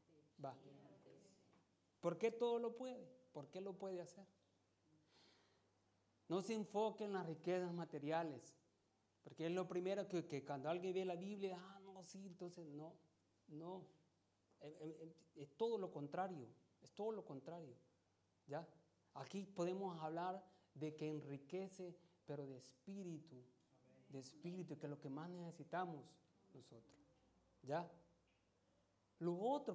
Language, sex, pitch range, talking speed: Italian, male, 130-180 Hz, 135 wpm